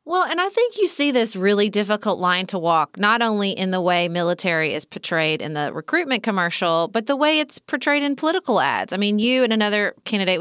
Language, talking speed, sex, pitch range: English, 220 wpm, female, 175-235 Hz